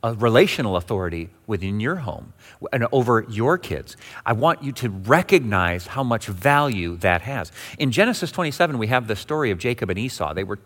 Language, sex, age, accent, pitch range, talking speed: English, male, 40-59, American, 110-135 Hz, 185 wpm